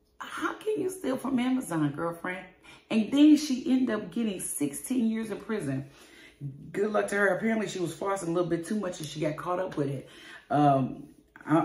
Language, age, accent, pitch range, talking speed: English, 30-49, American, 145-200 Hz, 195 wpm